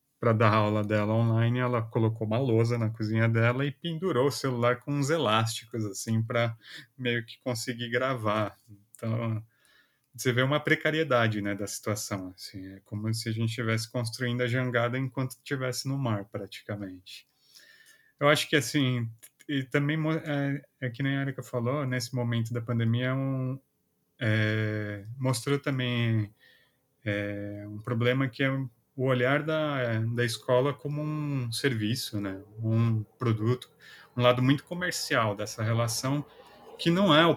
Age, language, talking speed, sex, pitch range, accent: 30-49, Portuguese, 150 wpm, male, 110-130 Hz, Brazilian